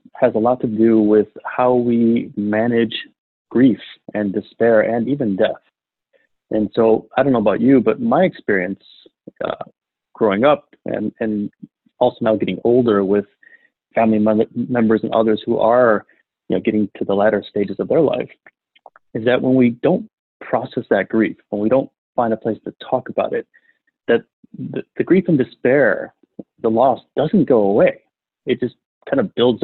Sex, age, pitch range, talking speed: male, 30-49, 110-120 Hz, 170 wpm